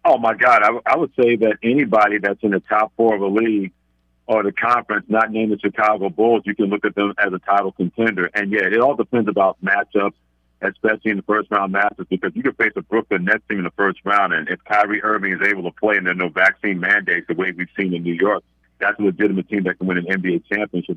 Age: 50-69